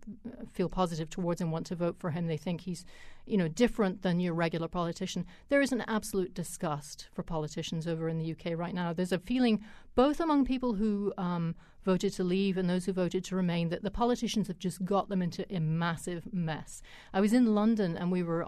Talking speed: 220 wpm